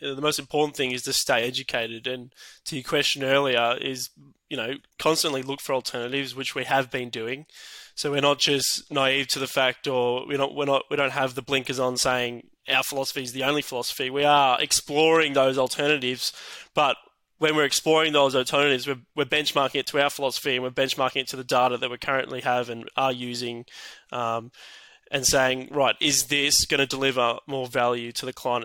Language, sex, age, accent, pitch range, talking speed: English, male, 20-39, Australian, 125-145 Hz, 195 wpm